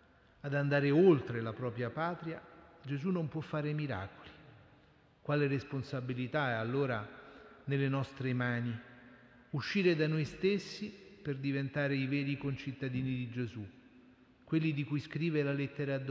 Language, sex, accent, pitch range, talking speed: Italian, male, native, 125-150 Hz, 135 wpm